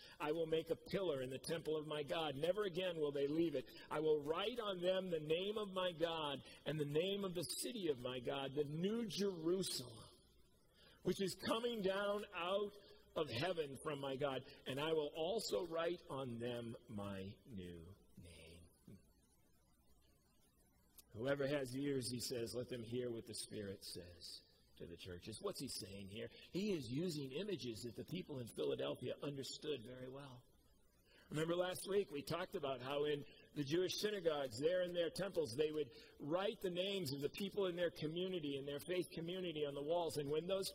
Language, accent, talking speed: English, American, 185 wpm